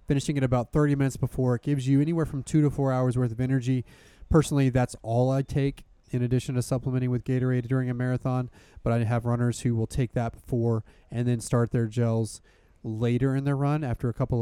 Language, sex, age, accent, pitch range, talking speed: English, male, 30-49, American, 115-135 Hz, 220 wpm